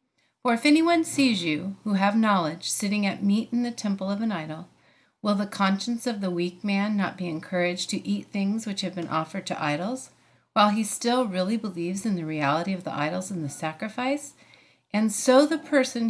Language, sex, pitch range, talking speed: English, female, 175-230 Hz, 200 wpm